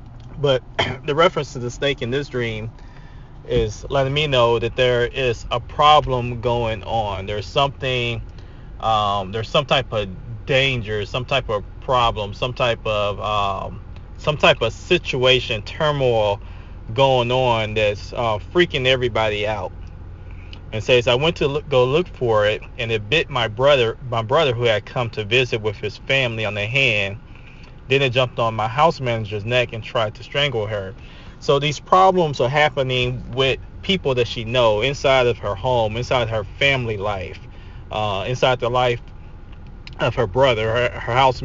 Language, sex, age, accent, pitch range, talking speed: English, male, 20-39, American, 105-130 Hz, 170 wpm